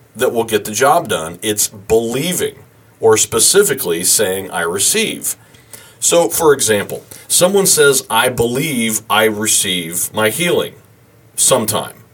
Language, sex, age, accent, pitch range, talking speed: English, male, 40-59, American, 110-145 Hz, 125 wpm